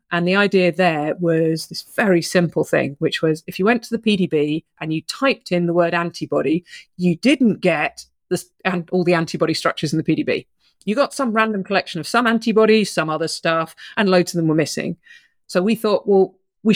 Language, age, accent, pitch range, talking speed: English, 40-59, British, 165-195 Hz, 210 wpm